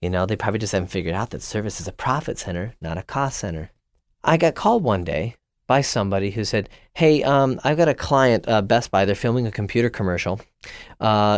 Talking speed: 220 wpm